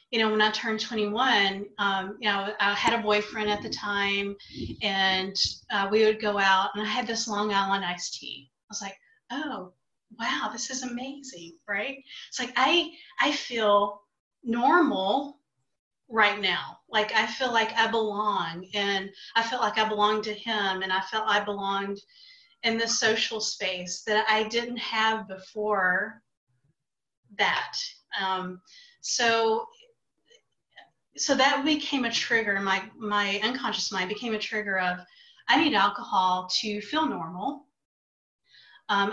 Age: 30-49